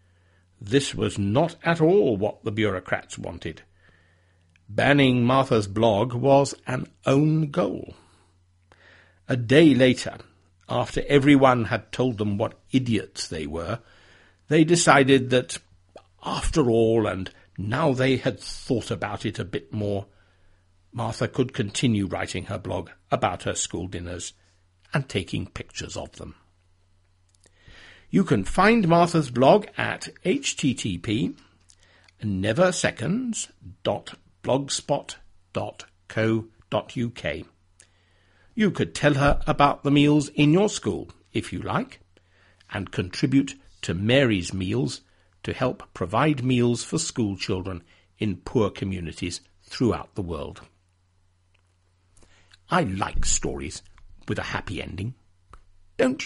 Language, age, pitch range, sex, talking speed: English, 60-79, 90-130 Hz, male, 110 wpm